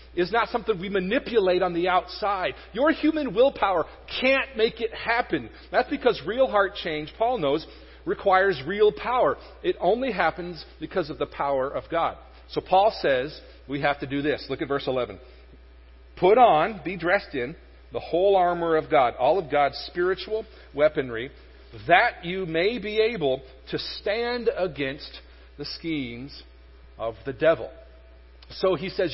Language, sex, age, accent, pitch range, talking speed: English, male, 40-59, American, 140-200 Hz, 160 wpm